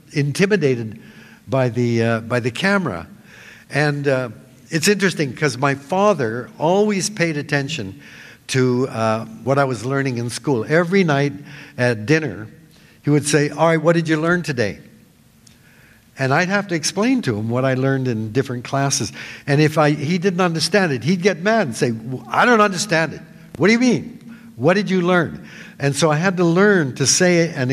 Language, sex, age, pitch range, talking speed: English, male, 60-79, 130-185 Hz, 190 wpm